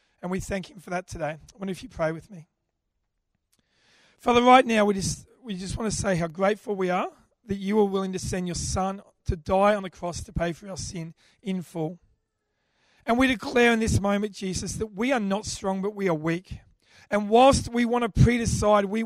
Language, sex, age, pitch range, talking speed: English, male, 40-59, 190-240 Hz, 225 wpm